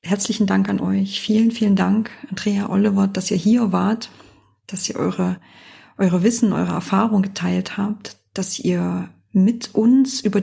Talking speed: 155 wpm